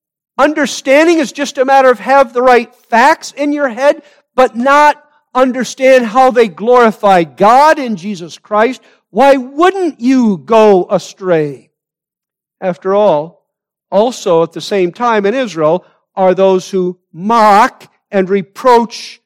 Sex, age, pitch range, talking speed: male, 50-69, 145-215 Hz, 135 wpm